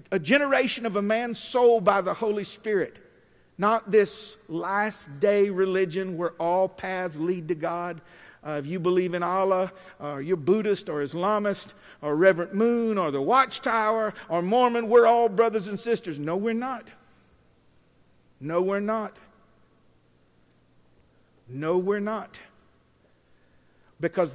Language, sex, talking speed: English, male, 135 wpm